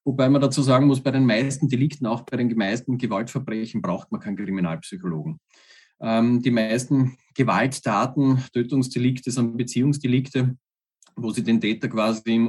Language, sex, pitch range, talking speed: German, male, 115-135 Hz, 150 wpm